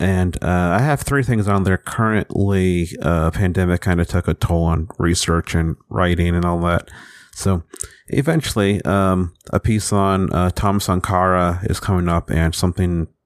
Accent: American